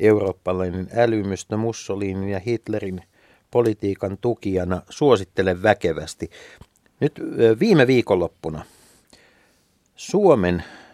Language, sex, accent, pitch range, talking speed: Finnish, male, native, 100-135 Hz, 70 wpm